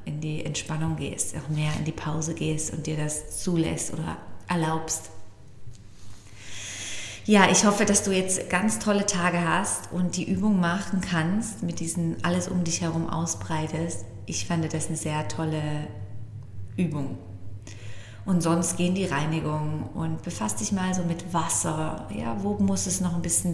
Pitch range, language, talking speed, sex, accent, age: 110-180 Hz, German, 165 wpm, female, German, 20-39